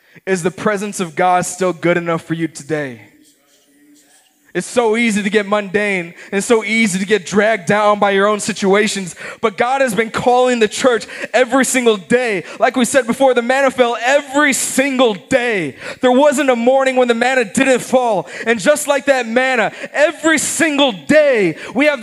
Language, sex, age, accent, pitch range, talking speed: English, male, 20-39, American, 205-265 Hz, 185 wpm